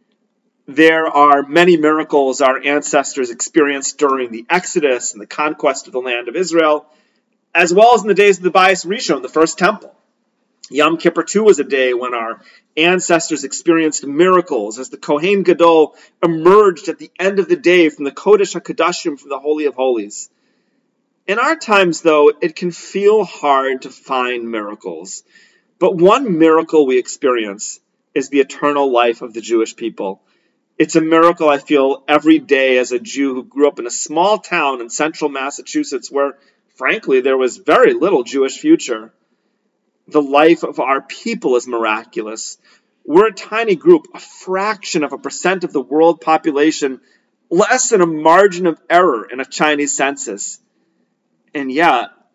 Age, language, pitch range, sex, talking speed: 40-59, English, 140-185 Hz, male, 165 wpm